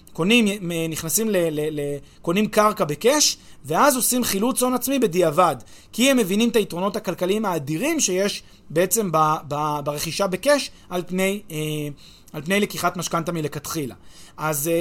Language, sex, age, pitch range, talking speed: Hebrew, male, 30-49, 160-215 Hz, 140 wpm